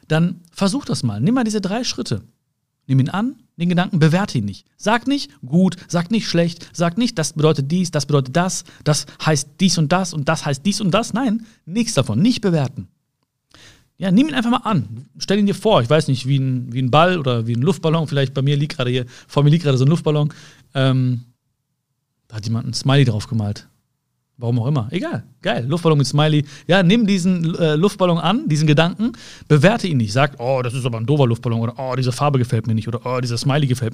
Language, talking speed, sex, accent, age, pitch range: German, 230 wpm, male, German, 40-59, 130-180 Hz